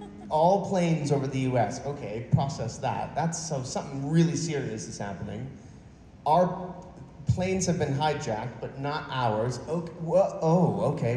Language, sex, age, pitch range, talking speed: English, male, 30-49, 110-150 Hz, 145 wpm